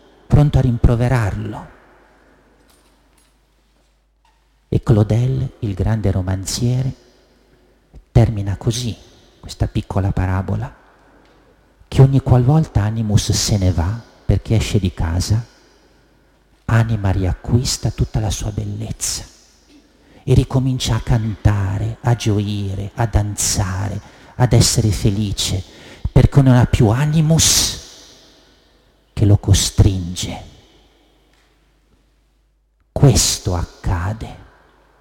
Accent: native